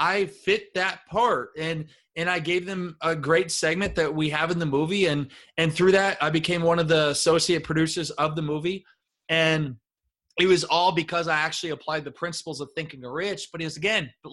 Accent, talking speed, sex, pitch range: American, 210 wpm, male, 160-195 Hz